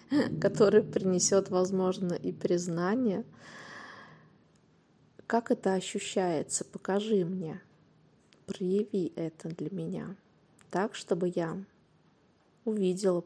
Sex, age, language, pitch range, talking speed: female, 20-39, Russian, 180-210 Hz, 80 wpm